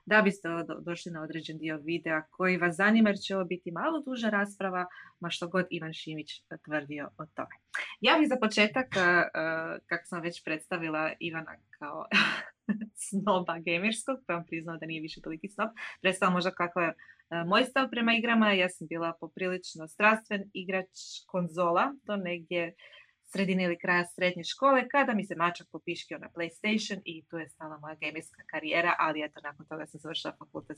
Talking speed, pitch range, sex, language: 175 wpm, 165-215 Hz, female, Croatian